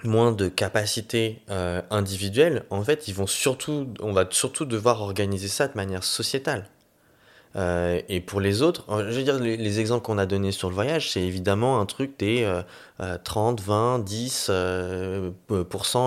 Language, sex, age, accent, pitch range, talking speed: French, male, 20-39, French, 90-110 Hz, 170 wpm